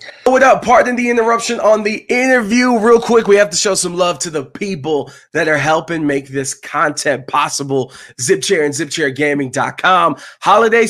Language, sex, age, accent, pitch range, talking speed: English, male, 20-39, American, 140-195 Hz, 165 wpm